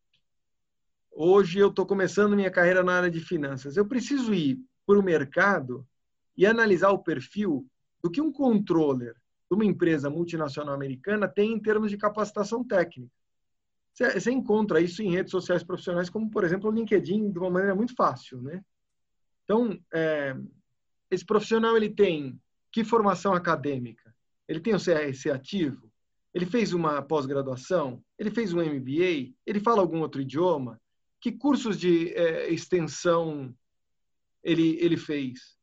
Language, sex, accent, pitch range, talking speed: Portuguese, male, Brazilian, 140-210 Hz, 150 wpm